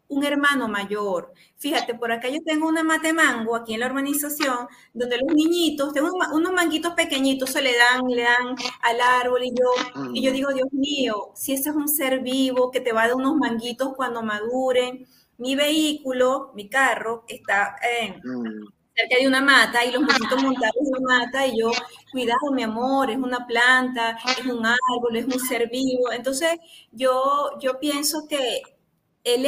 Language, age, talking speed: Spanish, 30-49, 180 wpm